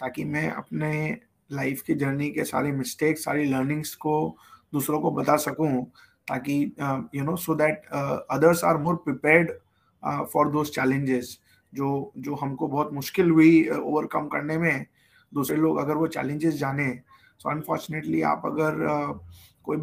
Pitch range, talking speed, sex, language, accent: 140-165 Hz, 150 wpm, male, Hindi, native